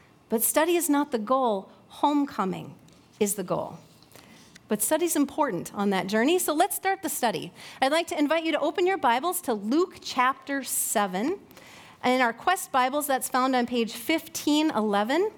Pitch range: 230-315 Hz